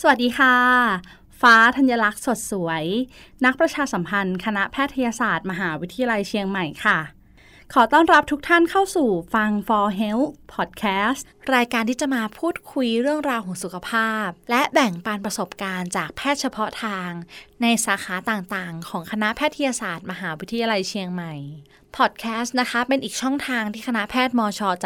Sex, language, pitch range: female, Thai, 195-265 Hz